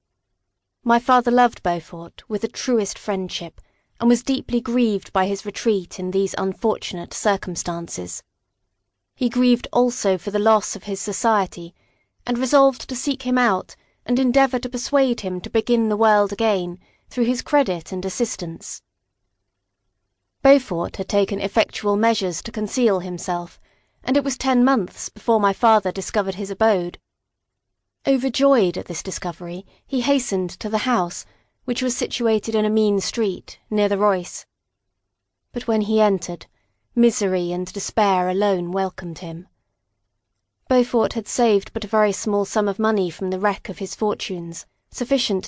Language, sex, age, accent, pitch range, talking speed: English, female, 30-49, British, 175-230 Hz, 150 wpm